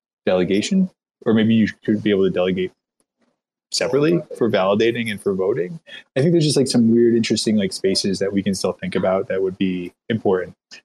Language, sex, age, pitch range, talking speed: English, male, 20-39, 95-120 Hz, 195 wpm